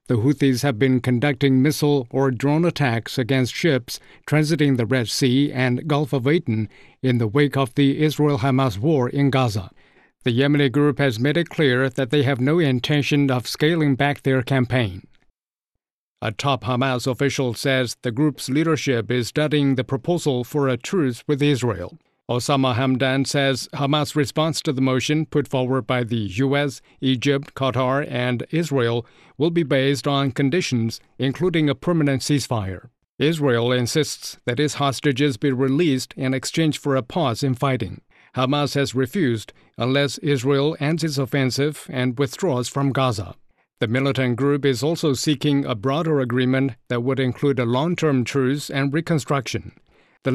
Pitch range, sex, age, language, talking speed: 125-145 Hz, male, 50-69, English, 155 wpm